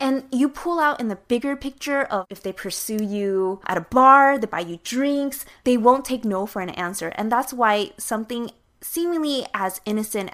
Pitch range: 190-275 Hz